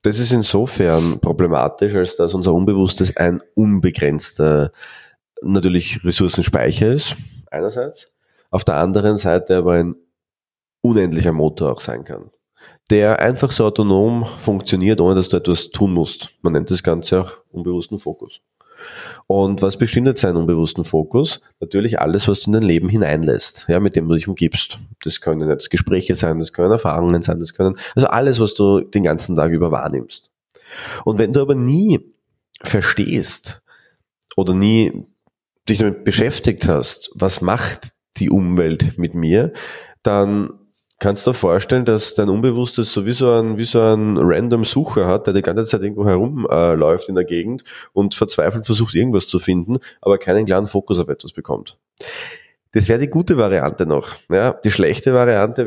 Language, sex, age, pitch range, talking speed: German, male, 30-49, 85-110 Hz, 165 wpm